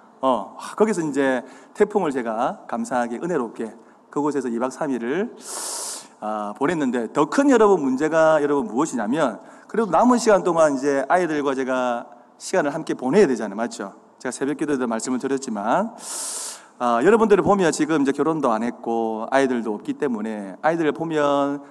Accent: native